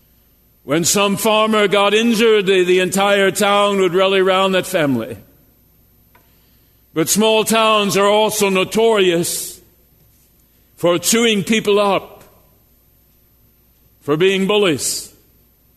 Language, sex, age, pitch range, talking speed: English, male, 60-79, 180-215 Hz, 105 wpm